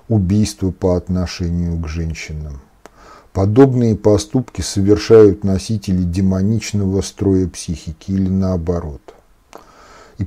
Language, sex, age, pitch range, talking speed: Russian, male, 50-69, 85-110 Hz, 90 wpm